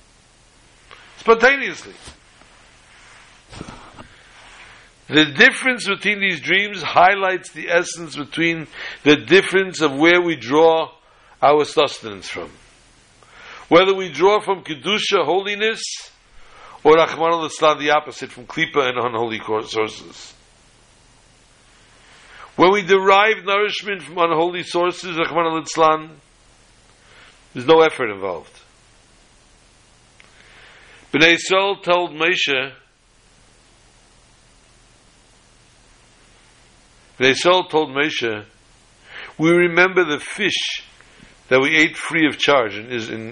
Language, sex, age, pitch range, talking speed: English, male, 60-79, 130-180 Hz, 95 wpm